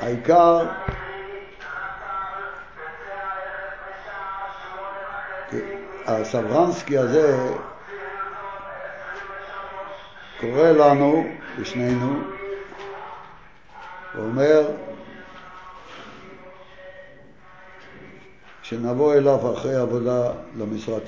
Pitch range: 110-185 Hz